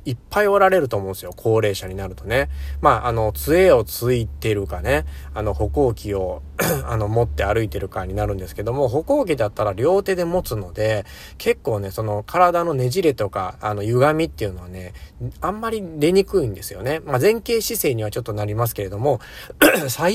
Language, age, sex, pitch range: Japanese, 40-59, male, 95-130 Hz